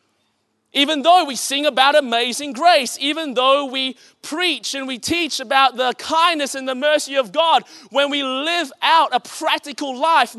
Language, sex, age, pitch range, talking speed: English, male, 30-49, 260-330 Hz, 170 wpm